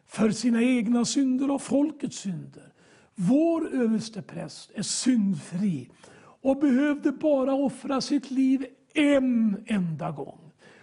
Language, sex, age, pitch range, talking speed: English, male, 60-79, 190-255 Hz, 115 wpm